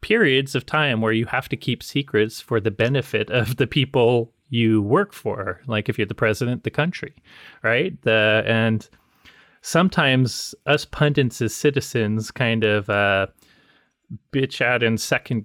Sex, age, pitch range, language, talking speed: male, 30-49, 110-130 Hz, English, 150 wpm